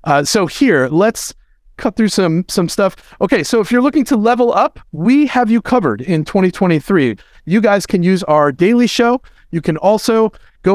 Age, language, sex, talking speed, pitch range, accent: 40-59, English, male, 190 wpm, 150-205 Hz, American